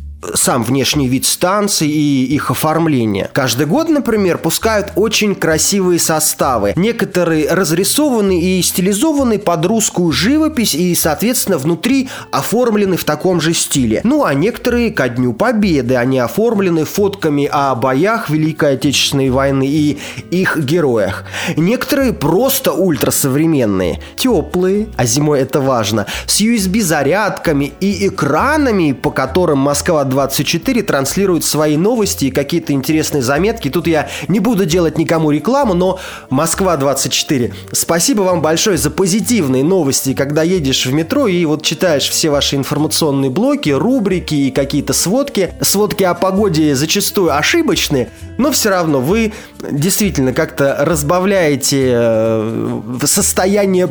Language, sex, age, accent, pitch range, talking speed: Russian, male, 20-39, native, 140-200 Hz, 125 wpm